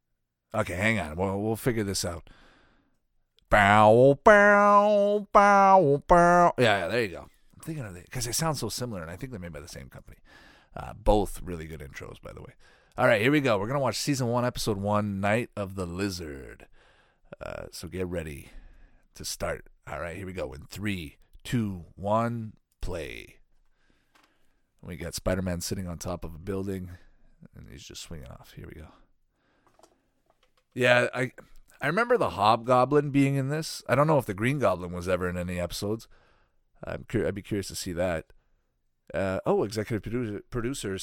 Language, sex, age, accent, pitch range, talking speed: English, male, 40-59, American, 90-125 Hz, 190 wpm